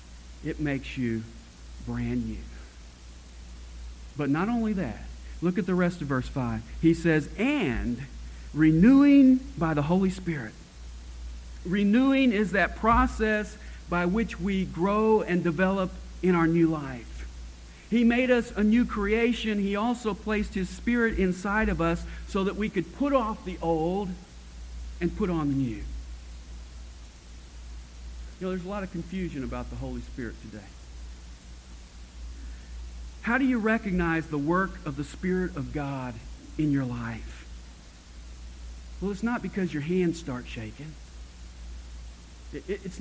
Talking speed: 140 wpm